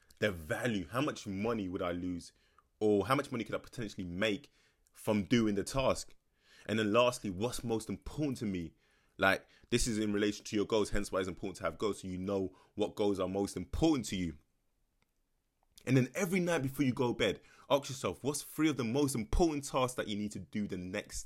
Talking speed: 220 wpm